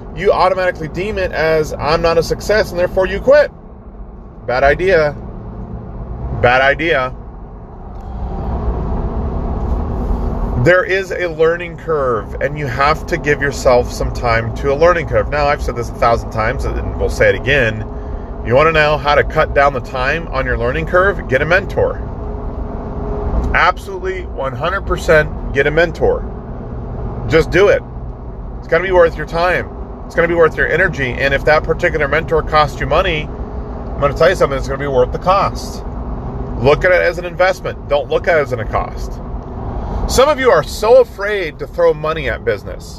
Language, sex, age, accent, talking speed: English, male, 40-59, American, 180 wpm